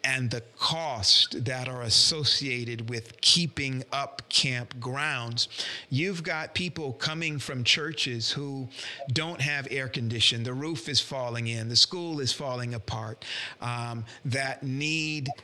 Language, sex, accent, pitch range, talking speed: English, male, American, 130-165 Hz, 135 wpm